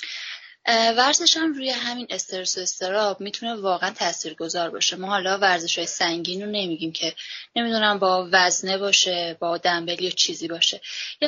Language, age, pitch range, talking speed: Persian, 10-29, 175-225 Hz, 160 wpm